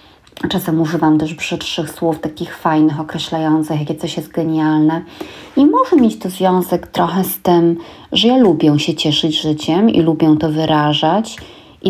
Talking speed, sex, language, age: 155 wpm, female, Polish, 30-49